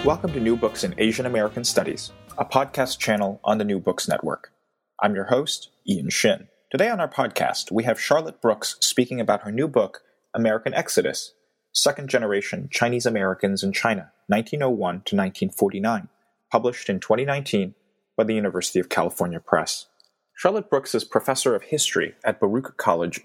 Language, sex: English, male